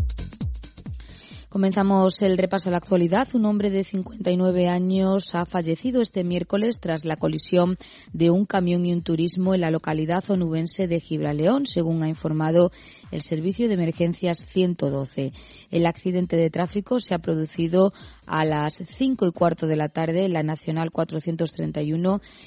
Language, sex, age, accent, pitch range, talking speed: Spanish, female, 20-39, Spanish, 160-185 Hz, 150 wpm